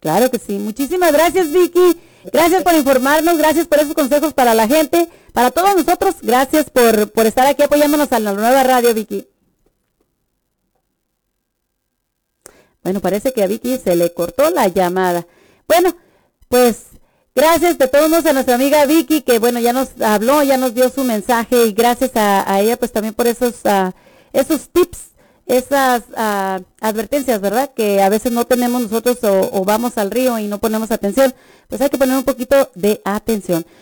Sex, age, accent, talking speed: female, 40-59, Mexican, 175 wpm